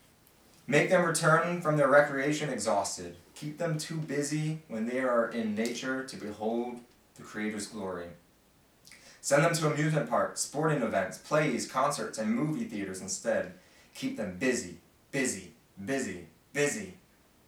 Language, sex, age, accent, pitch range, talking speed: English, male, 20-39, American, 105-140 Hz, 135 wpm